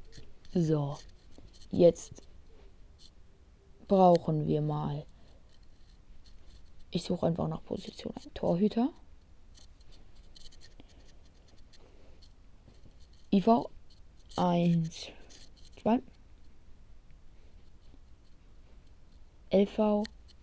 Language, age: German, 20-39